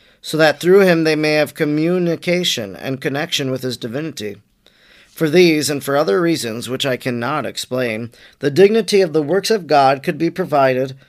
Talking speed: 180 wpm